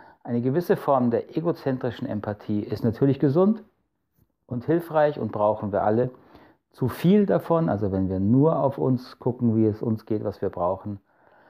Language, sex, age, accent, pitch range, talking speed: German, male, 40-59, German, 110-135 Hz, 165 wpm